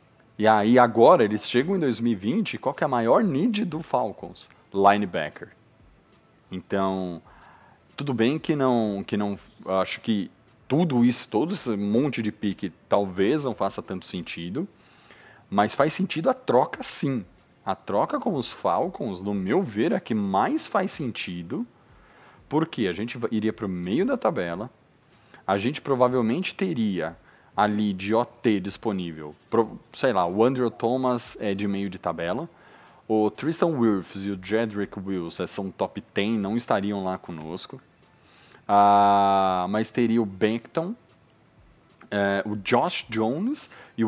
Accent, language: Brazilian, Portuguese